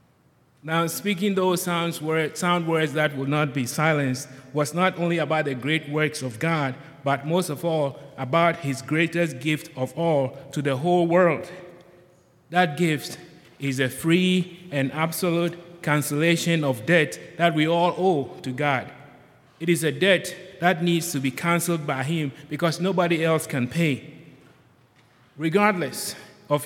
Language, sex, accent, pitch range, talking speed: English, male, Nigerian, 145-175 Hz, 155 wpm